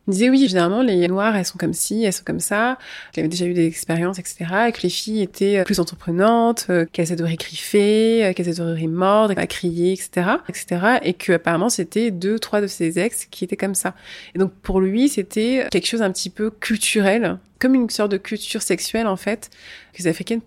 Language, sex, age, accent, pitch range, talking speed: French, female, 20-39, French, 180-220 Hz, 215 wpm